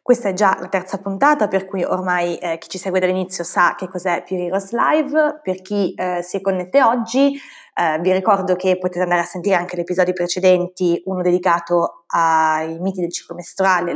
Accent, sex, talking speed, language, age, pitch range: native, female, 200 wpm, Italian, 20-39, 180-210 Hz